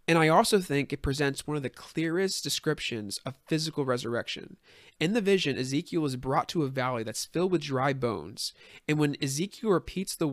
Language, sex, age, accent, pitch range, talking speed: English, male, 20-39, American, 120-145 Hz, 190 wpm